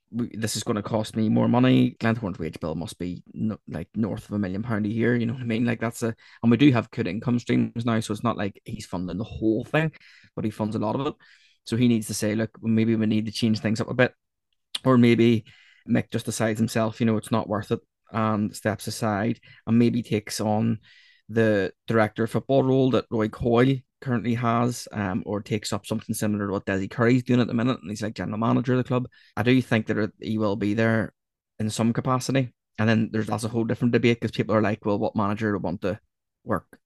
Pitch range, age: 105-120 Hz, 20-39